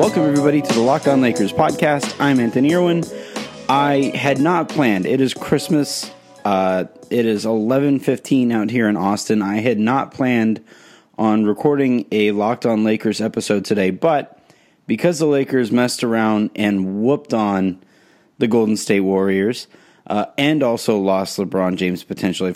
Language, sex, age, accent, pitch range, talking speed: English, male, 30-49, American, 100-130 Hz, 155 wpm